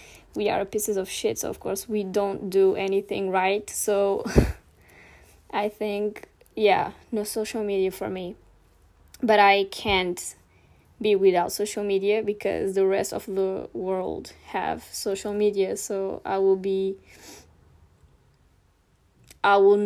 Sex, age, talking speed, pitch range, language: female, 10-29, 135 wpm, 190-220 Hz, Portuguese